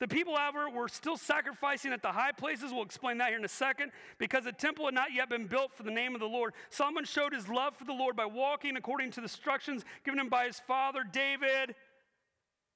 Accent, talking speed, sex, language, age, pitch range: American, 240 wpm, male, English, 40-59, 210-285 Hz